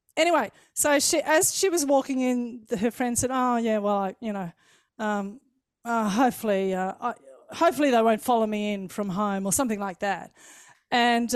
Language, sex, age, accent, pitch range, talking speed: English, female, 30-49, Australian, 210-285 Hz, 190 wpm